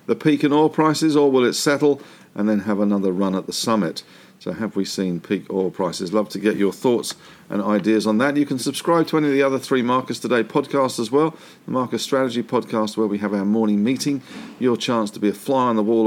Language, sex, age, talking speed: English, male, 50-69, 245 wpm